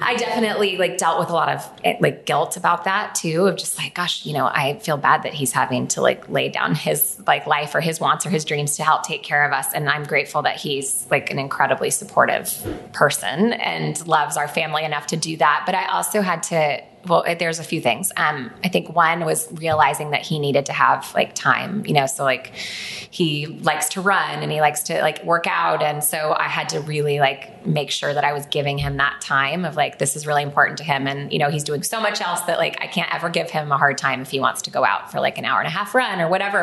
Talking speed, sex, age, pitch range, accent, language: 260 wpm, female, 20-39, 145-180 Hz, American, English